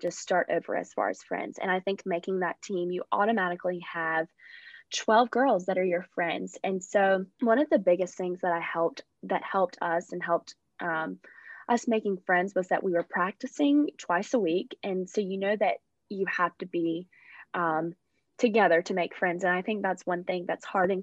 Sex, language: female, English